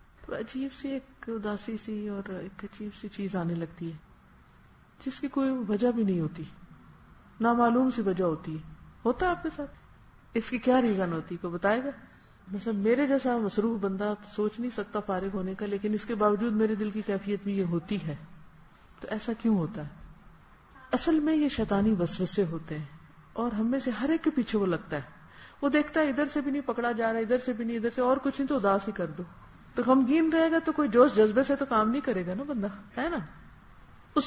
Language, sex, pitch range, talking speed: Urdu, female, 190-250 Hz, 185 wpm